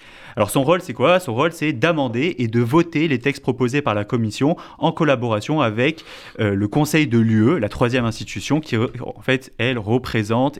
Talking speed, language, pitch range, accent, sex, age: 190 wpm, French, 105-140 Hz, French, male, 30-49